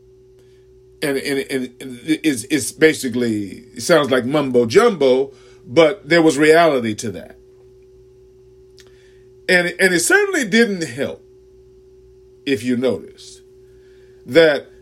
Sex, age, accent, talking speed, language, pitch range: male, 40-59, American, 110 wpm, English, 125-190 Hz